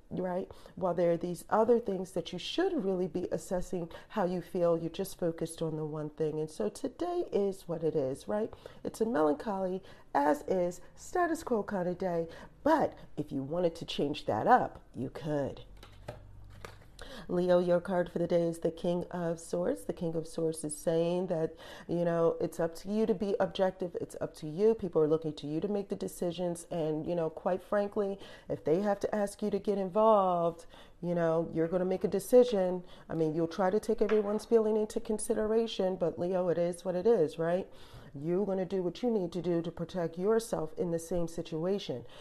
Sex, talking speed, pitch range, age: female, 210 wpm, 165-205 Hz, 40-59